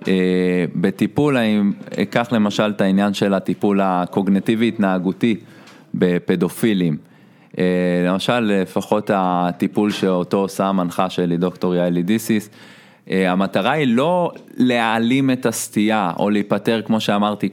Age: 20-39